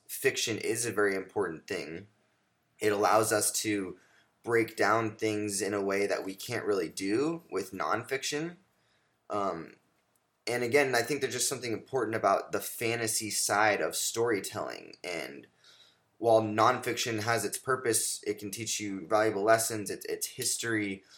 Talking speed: 150 wpm